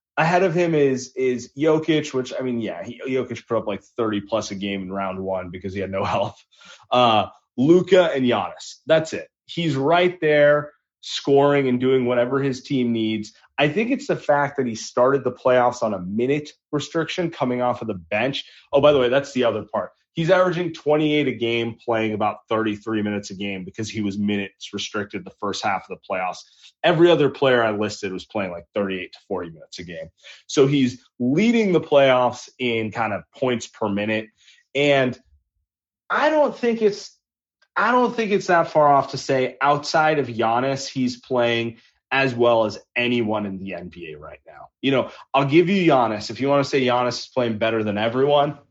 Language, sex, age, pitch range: English, male, 30-49, 110-145 Hz